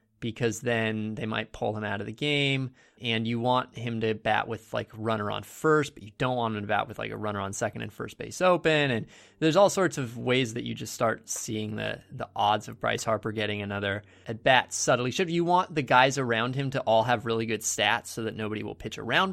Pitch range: 105-140 Hz